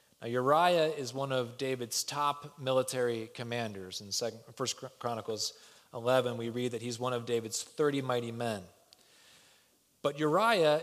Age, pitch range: 30-49, 120-145 Hz